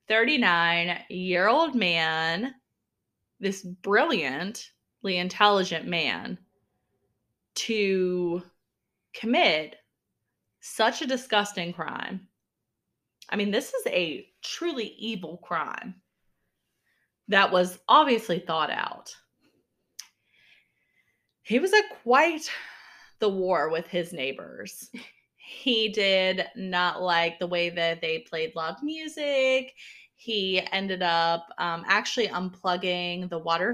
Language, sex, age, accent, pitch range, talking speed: English, female, 20-39, American, 170-215 Hz, 100 wpm